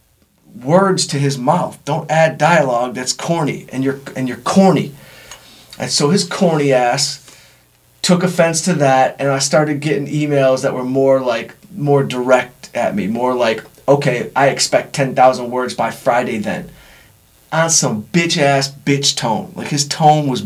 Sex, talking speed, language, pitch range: male, 165 wpm, English, 130-170 Hz